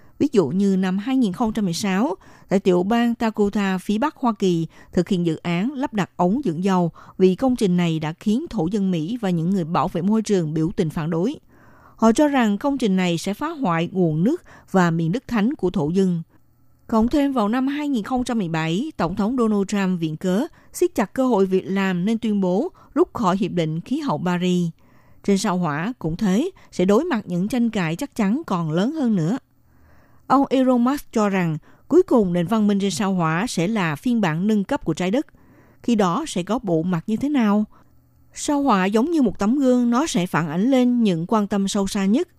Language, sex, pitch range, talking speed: Vietnamese, female, 175-235 Hz, 215 wpm